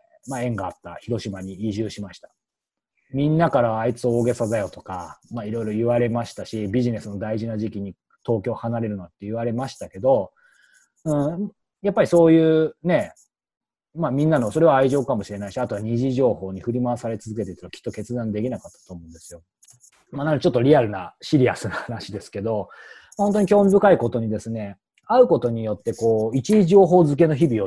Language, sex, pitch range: Japanese, male, 105-155 Hz